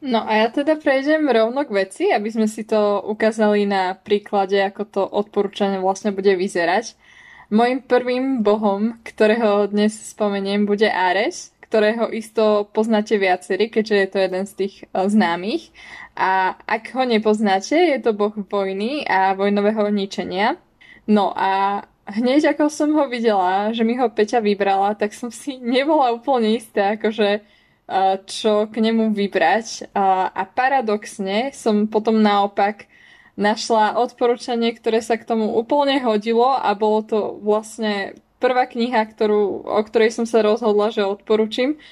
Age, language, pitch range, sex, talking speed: 20-39, Slovak, 205-235 Hz, female, 145 wpm